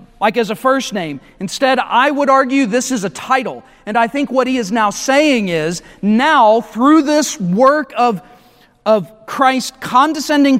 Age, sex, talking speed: 40-59, male, 170 wpm